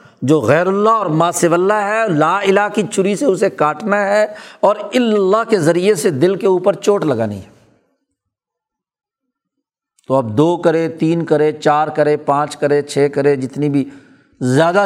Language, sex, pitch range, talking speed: Urdu, male, 145-195 Hz, 165 wpm